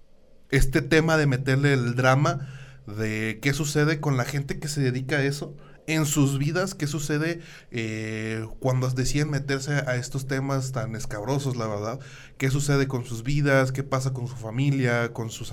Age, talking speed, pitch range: 20-39, 175 wpm, 120-140 Hz